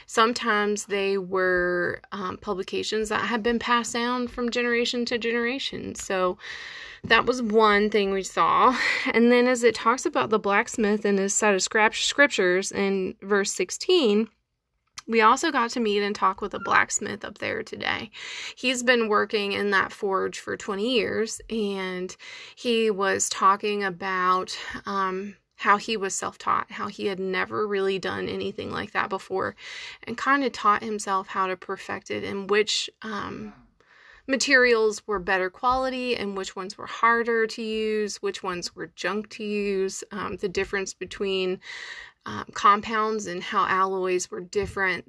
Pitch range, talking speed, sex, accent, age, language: 190-235 Hz, 160 wpm, female, American, 20-39, English